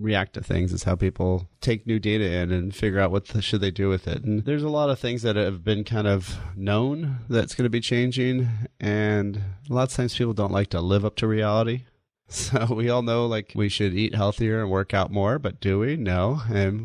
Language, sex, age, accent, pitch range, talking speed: English, male, 30-49, American, 95-115 Hz, 240 wpm